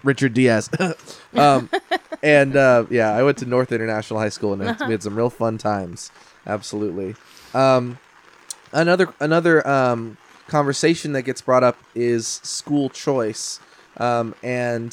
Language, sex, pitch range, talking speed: English, male, 110-125 Hz, 140 wpm